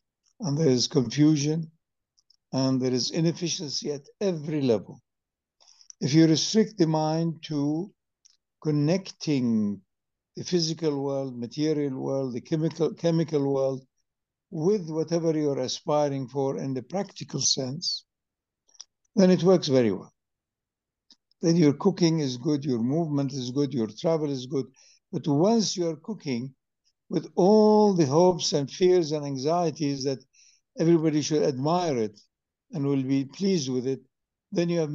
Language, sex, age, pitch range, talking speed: English, male, 60-79, 135-175 Hz, 135 wpm